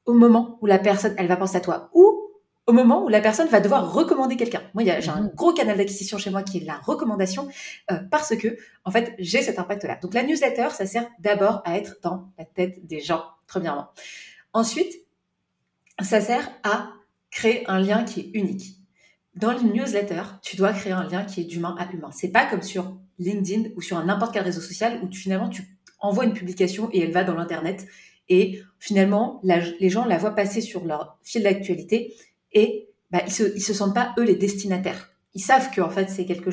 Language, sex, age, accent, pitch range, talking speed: French, female, 30-49, French, 185-230 Hz, 215 wpm